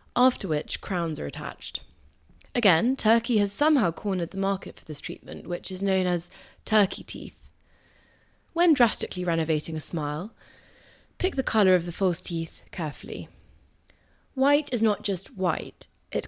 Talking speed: 150 wpm